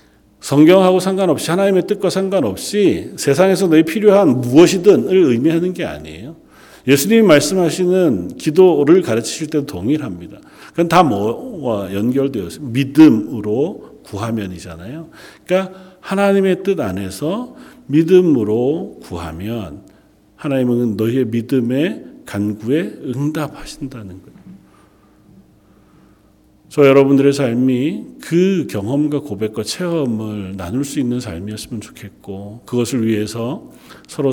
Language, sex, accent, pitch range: Korean, male, native, 105-155 Hz